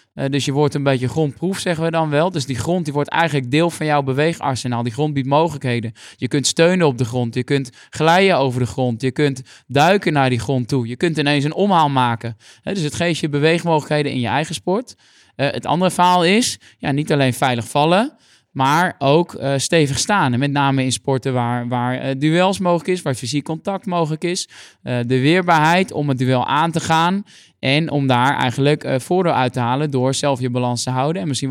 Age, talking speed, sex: 20-39, 220 wpm, male